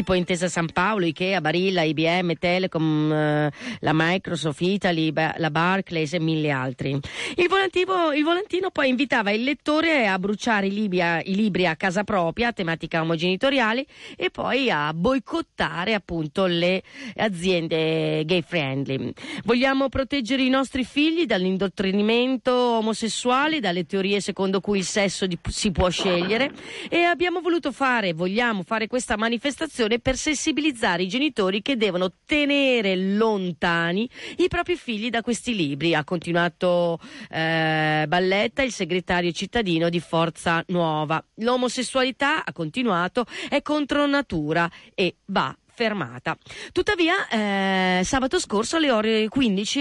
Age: 30-49